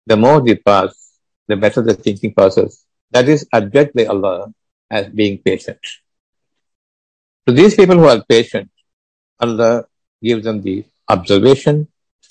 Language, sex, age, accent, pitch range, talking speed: Tamil, male, 60-79, native, 105-145 Hz, 140 wpm